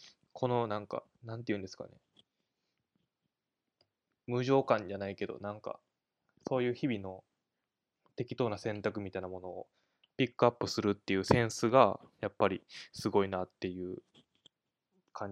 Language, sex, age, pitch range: Japanese, male, 20-39, 100-120 Hz